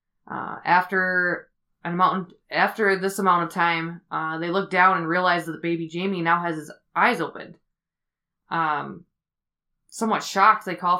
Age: 20-39